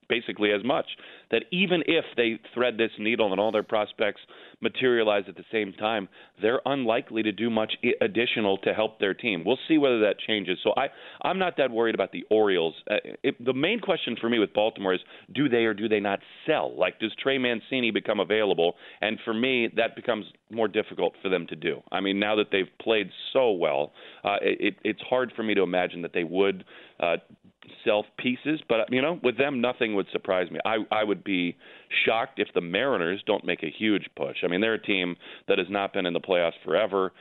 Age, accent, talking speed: 40-59, American, 215 wpm